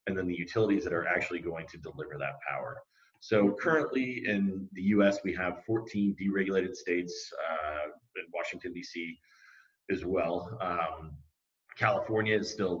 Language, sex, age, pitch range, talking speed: English, male, 30-49, 85-105 Hz, 150 wpm